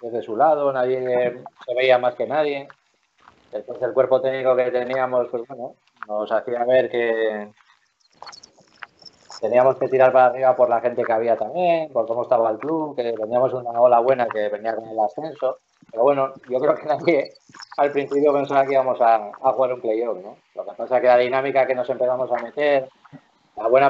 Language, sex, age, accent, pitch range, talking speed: Spanish, male, 20-39, Spanish, 120-140 Hz, 195 wpm